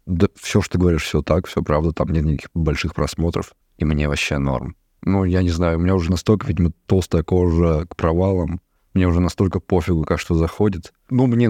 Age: 20-39